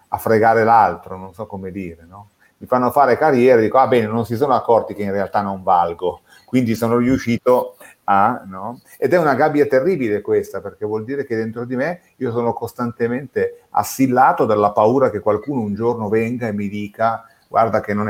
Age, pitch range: 30-49, 100-130 Hz